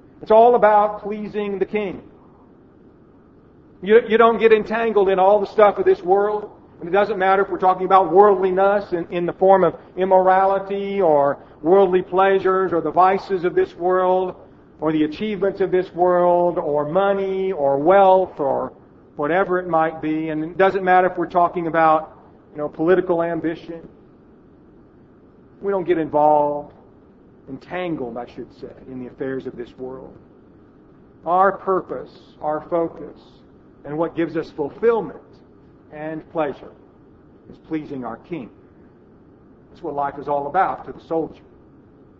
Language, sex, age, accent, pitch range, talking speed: English, male, 50-69, American, 150-190 Hz, 150 wpm